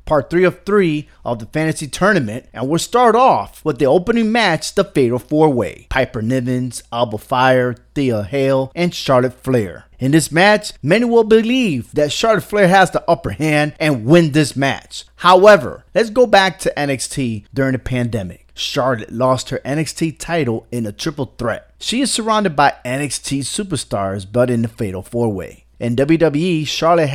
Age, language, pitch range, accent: 30-49, English, 125-175 Hz, American